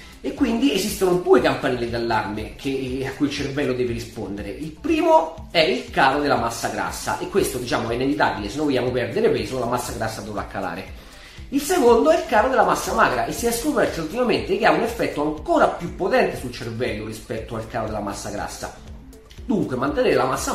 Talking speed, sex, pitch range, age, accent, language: 200 wpm, male, 120-195 Hz, 30-49, native, Italian